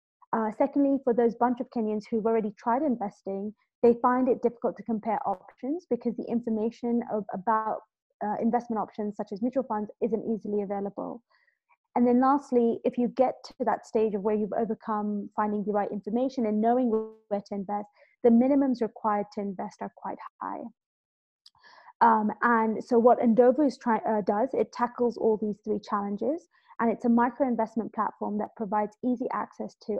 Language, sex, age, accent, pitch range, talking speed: English, female, 20-39, British, 210-245 Hz, 170 wpm